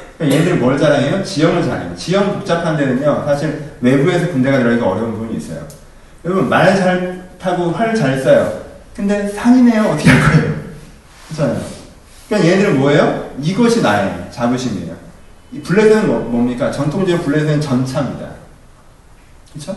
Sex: male